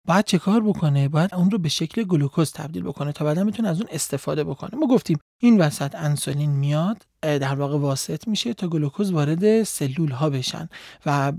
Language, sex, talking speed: Persian, male, 190 wpm